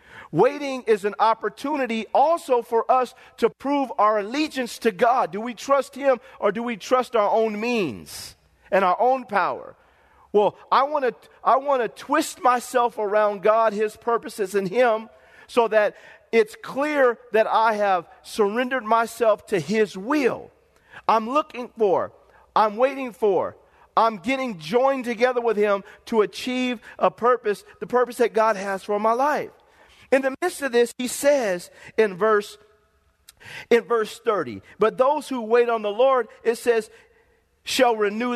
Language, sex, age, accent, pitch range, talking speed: English, male, 40-59, American, 215-265 Hz, 155 wpm